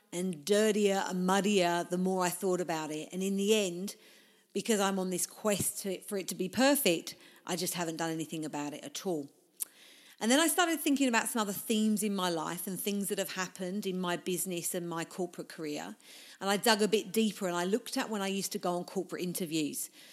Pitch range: 175-215 Hz